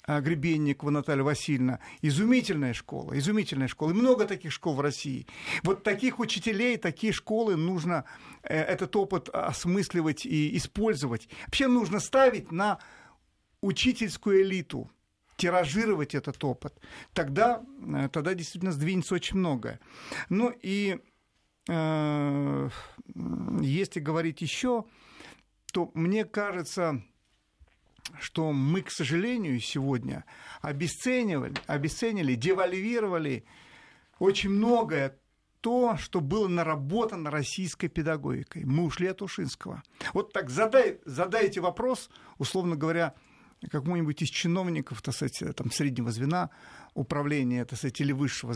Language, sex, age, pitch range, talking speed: Russian, male, 50-69, 140-195 Hz, 110 wpm